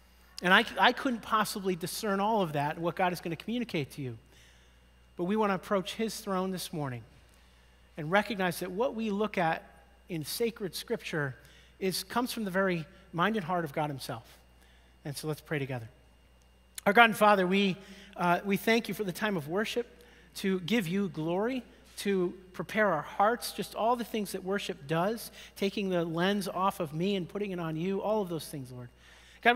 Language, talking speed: English, 200 wpm